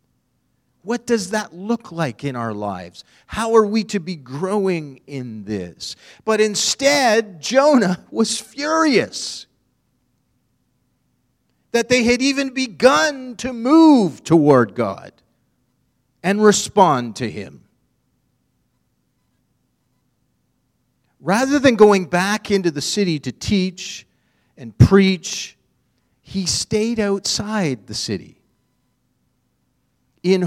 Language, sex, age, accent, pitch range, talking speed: English, male, 40-59, American, 130-210 Hz, 100 wpm